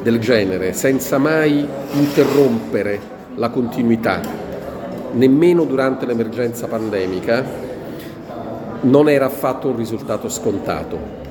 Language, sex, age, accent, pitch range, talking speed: Italian, male, 50-69, native, 115-145 Hz, 90 wpm